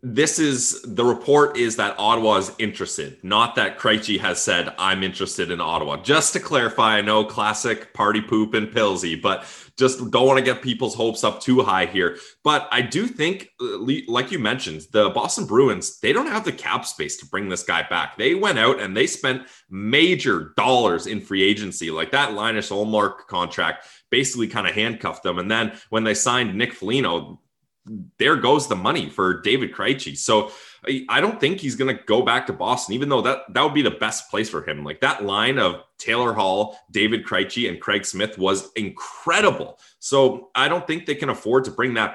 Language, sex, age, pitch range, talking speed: English, male, 20-39, 100-130 Hz, 200 wpm